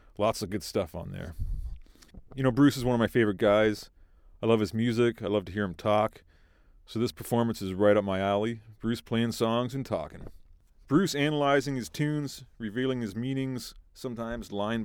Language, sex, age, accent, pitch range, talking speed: English, male, 40-59, American, 90-120 Hz, 190 wpm